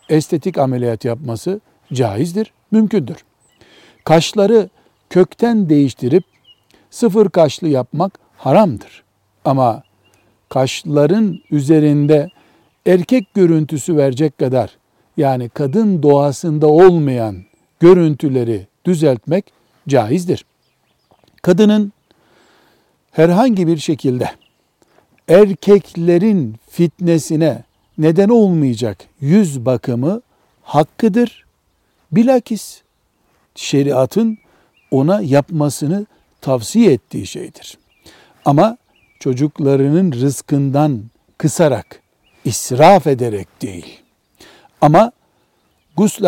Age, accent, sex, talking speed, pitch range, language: 60-79, native, male, 70 wpm, 135-185 Hz, Turkish